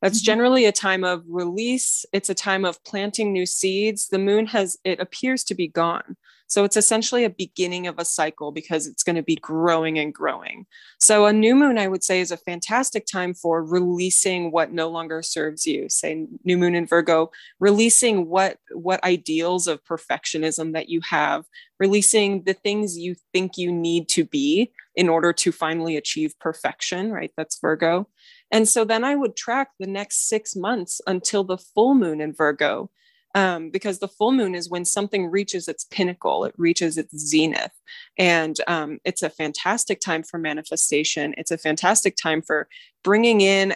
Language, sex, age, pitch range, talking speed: English, female, 20-39, 165-205 Hz, 180 wpm